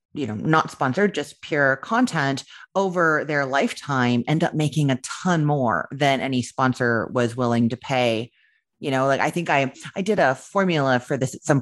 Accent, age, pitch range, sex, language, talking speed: American, 30-49, 125-160 Hz, female, English, 190 wpm